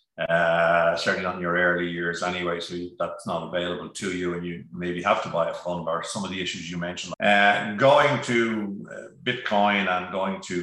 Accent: Irish